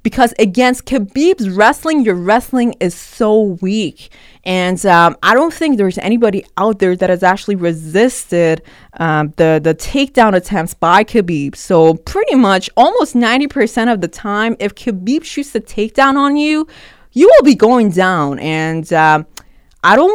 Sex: female